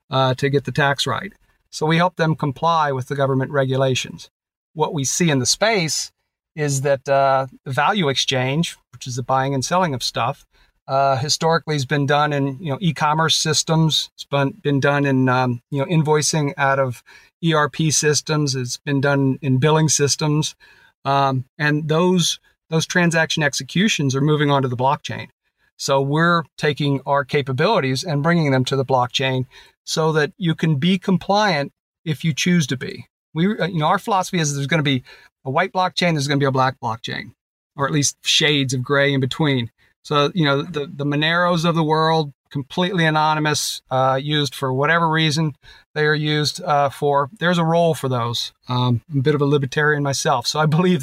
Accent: American